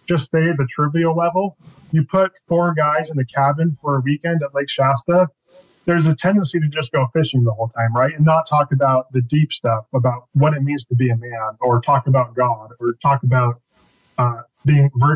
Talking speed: 210 wpm